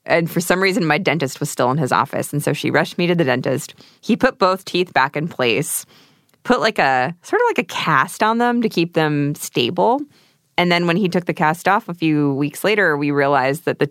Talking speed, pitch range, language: 240 wpm, 145-180 Hz, English